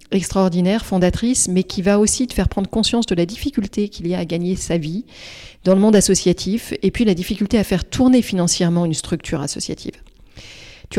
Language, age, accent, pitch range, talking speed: French, 40-59, French, 175-210 Hz, 195 wpm